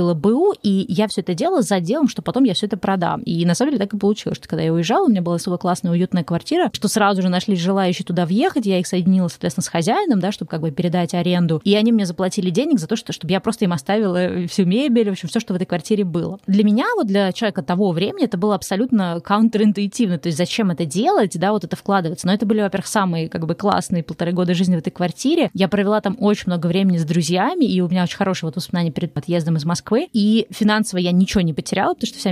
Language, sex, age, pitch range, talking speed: Russian, female, 20-39, 175-215 Hz, 255 wpm